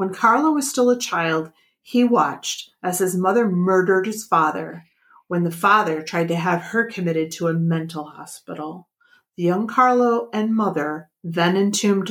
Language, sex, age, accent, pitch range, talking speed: English, female, 40-59, American, 170-230 Hz, 165 wpm